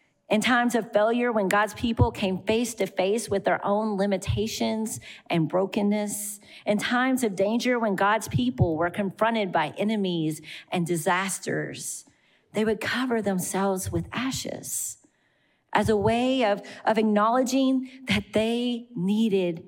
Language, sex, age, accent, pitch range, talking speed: English, female, 40-59, American, 170-220 Hz, 135 wpm